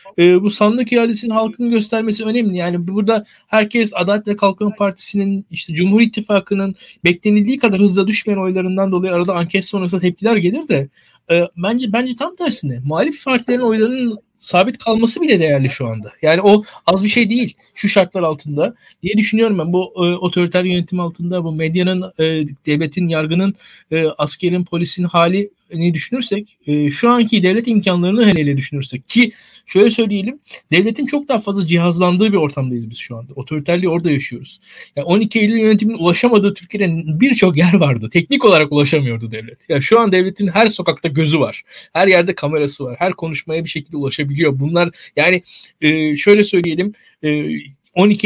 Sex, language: male, Turkish